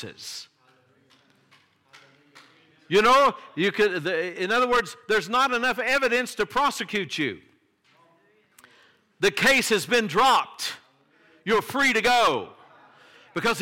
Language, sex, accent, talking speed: English, male, American, 105 wpm